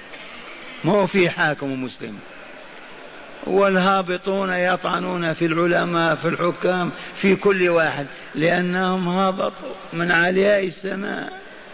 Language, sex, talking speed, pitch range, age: Arabic, male, 90 wpm, 175-195 Hz, 50-69